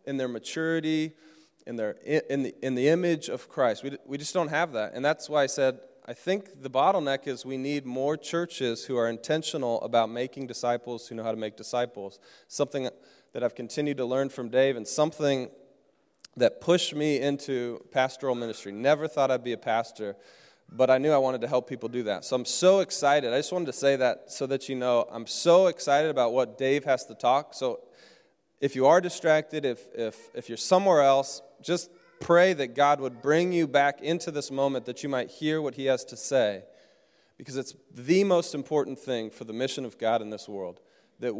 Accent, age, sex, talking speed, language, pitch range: American, 20-39, male, 210 wpm, English, 125-165 Hz